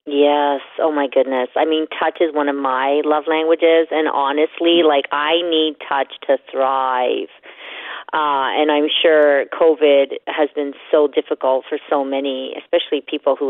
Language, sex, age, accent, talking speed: English, female, 40-59, American, 160 wpm